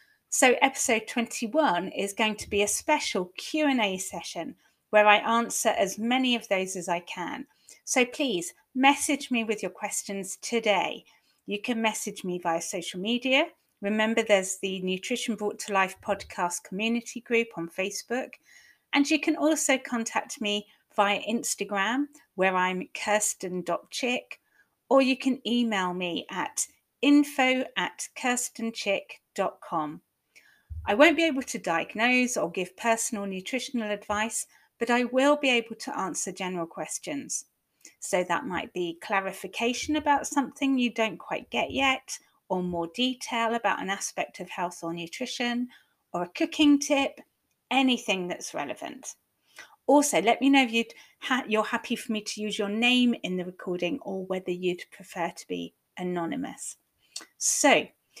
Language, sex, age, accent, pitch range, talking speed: English, female, 40-59, British, 190-265 Hz, 145 wpm